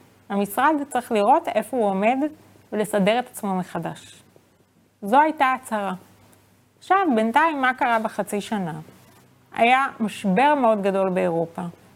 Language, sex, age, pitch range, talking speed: Hebrew, female, 30-49, 195-255 Hz, 120 wpm